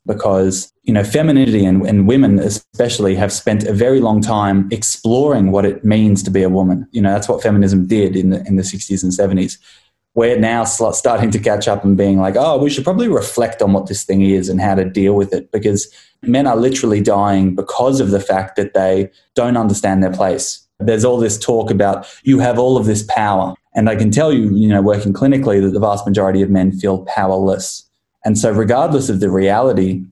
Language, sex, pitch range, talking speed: English, male, 95-110 Hz, 215 wpm